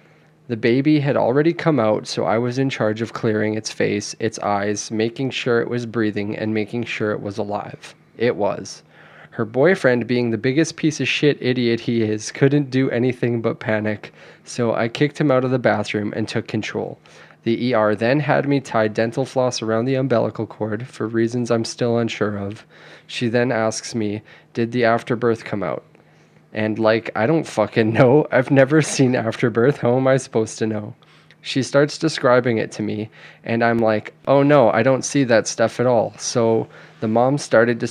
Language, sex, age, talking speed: English, male, 20-39, 195 wpm